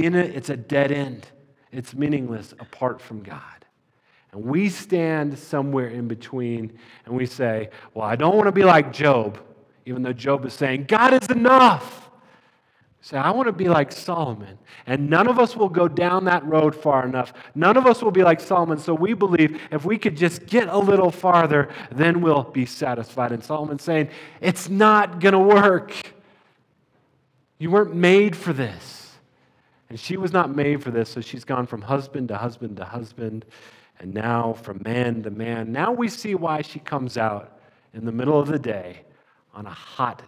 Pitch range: 120-170 Hz